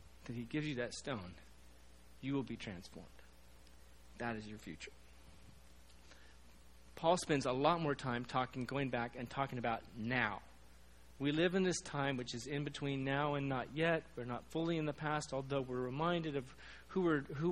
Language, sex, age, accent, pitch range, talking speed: English, male, 40-59, American, 120-150 Hz, 180 wpm